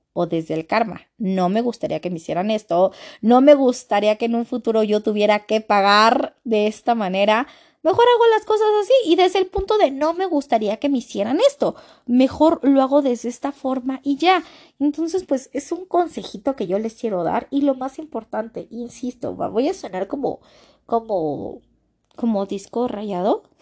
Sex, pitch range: female, 210-300 Hz